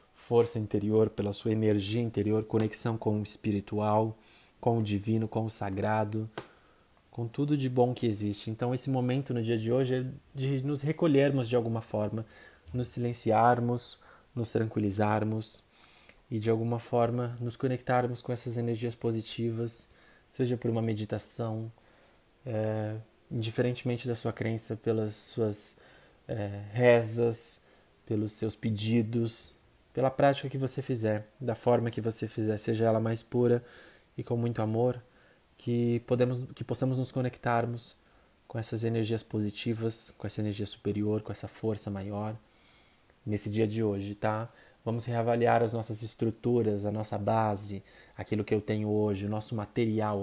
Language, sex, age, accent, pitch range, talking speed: Portuguese, male, 20-39, Brazilian, 105-120 Hz, 145 wpm